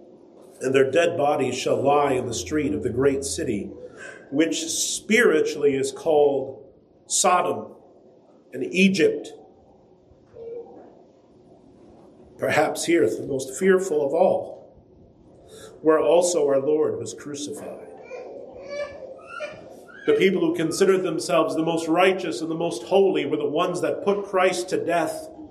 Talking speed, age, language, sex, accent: 125 wpm, 40-59, English, male, American